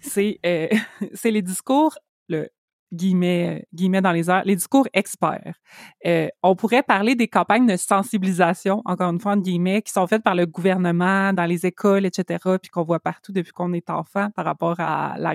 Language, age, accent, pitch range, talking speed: French, 20-39, Canadian, 175-210 Hz, 190 wpm